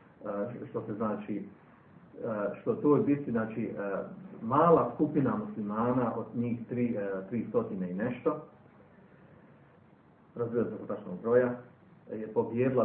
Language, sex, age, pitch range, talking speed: Croatian, male, 40-59, 105-125 Hz, 110 wpm